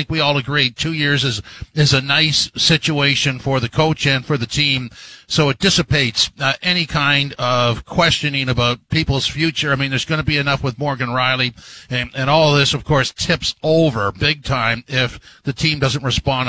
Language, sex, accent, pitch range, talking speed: English, male, American, 125-150 Hz, 195 wpm